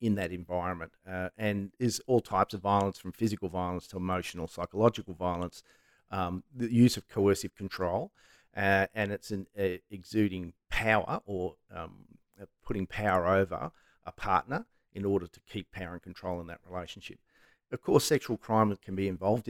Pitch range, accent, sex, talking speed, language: 90-110 Hz, Australian, male, 165 wpm, English